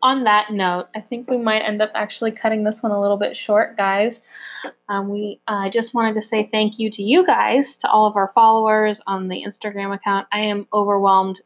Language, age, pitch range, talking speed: English, 20-39, 185-220 Hz, 215 wpm